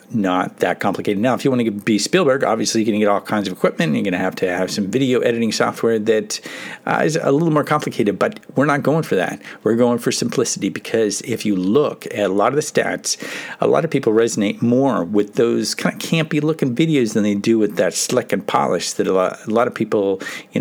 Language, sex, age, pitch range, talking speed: English, male, 50-69, 100-130 Hz, 245 wpm